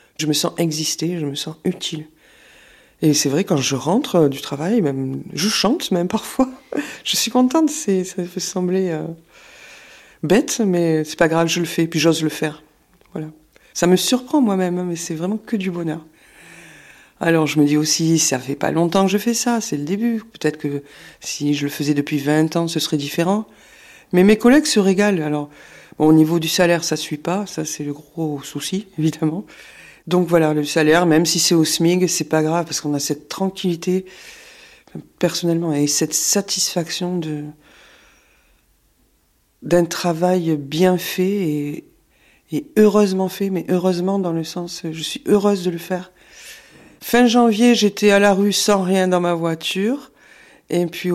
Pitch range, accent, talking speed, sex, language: 155-195 Hz, French, 180 wpm, female, French